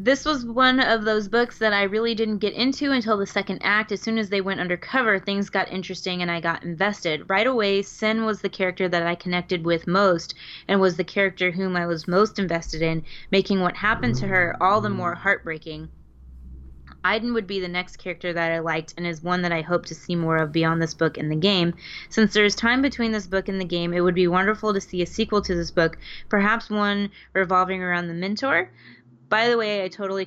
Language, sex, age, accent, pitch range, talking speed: English, female, 20-39, American, 170-210 Hz, 230 wpm